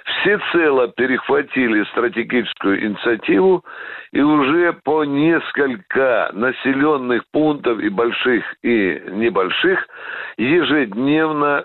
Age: 60-79